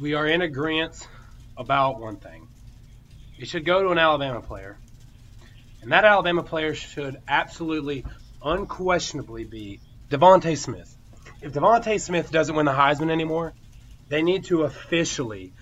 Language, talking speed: English, 140 wpm